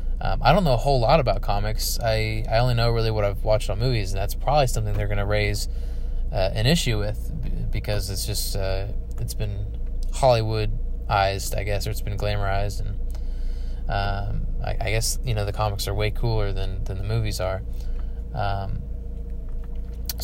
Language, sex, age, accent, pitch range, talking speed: English, male, 20-39, American, 95-115 Hz, 185 wpm